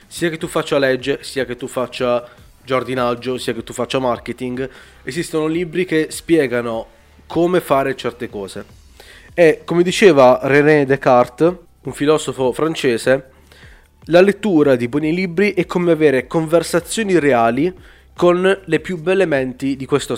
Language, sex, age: Italian, male, 20-39